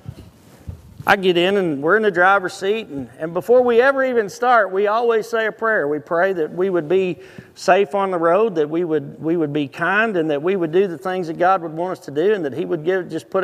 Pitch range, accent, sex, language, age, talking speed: 175-225 Hz, American, male, English, 40-59, 265 wpm